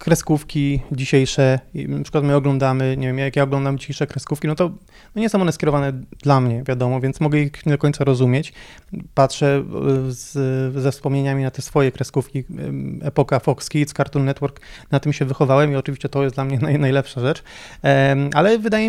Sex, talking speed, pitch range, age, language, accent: male, 175 wpm, 140-170 Hz, 30-49, Polish, native